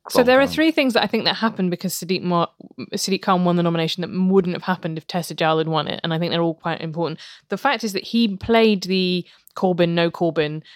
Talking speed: 250 wpm